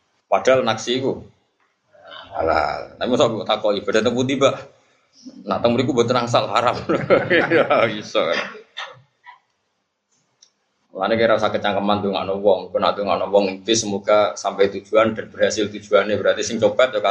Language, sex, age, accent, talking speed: Indonesian, male, 20-39, native, 135 wpm